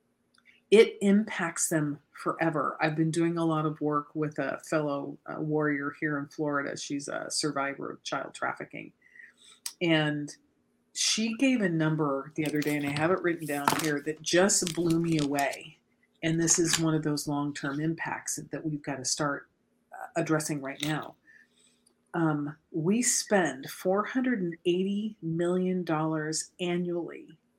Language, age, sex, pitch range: English, 40-59, female, 150-175 Hz